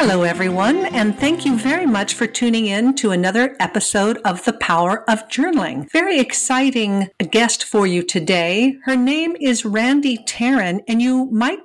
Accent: American